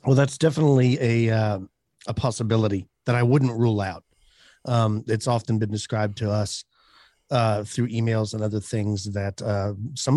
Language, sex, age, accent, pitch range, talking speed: English, male, 40-59, American, 110-130 Hz, 165 wpm